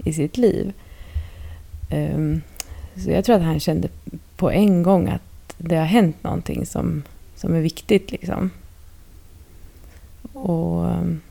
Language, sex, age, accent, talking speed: Swedish, female, 30-49, native, 120 wpm